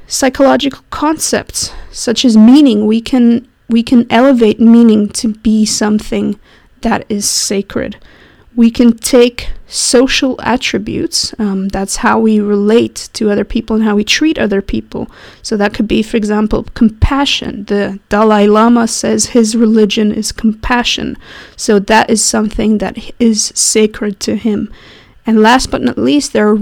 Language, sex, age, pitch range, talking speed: English, female, 20-39, 205-235 Hz, 150 wpm